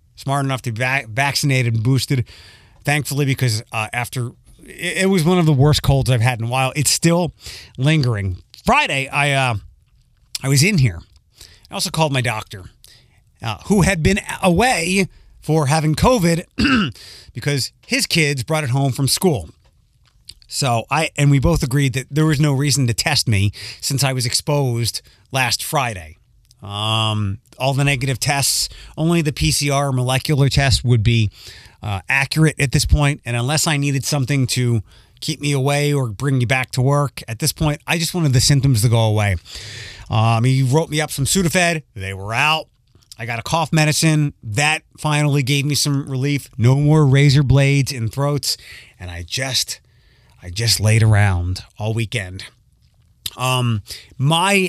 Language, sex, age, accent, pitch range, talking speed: English, male, 30-49, American, 115-150 Hz, 170 wpm